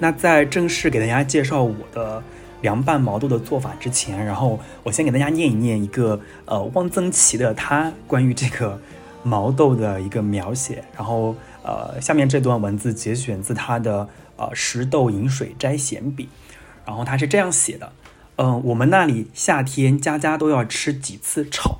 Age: 20-39